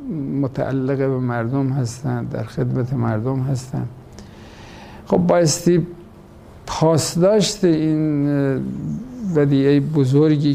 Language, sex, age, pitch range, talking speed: English, male, 60-79, 125-150 Hz, 85 wpm